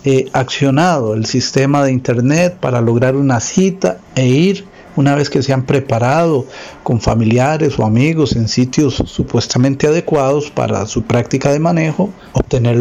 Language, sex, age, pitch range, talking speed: Spanish, male, 50-69, 120-155 Hz, 145 wpm